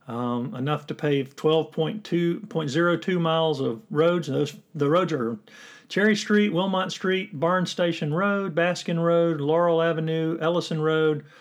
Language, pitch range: English, 130-170 Hz